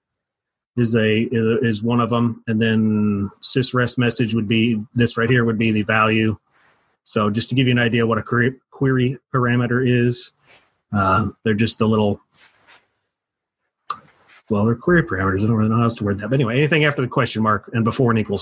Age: 30-49